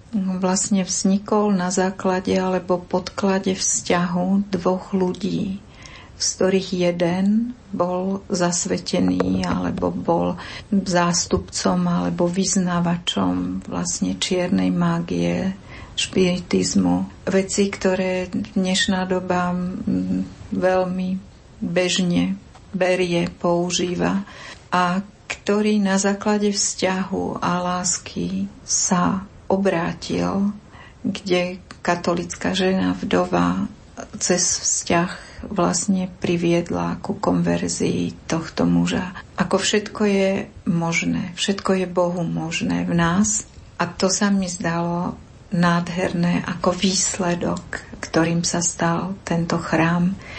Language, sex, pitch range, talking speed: Slovak, female, 165-190 Hz, 90 wpm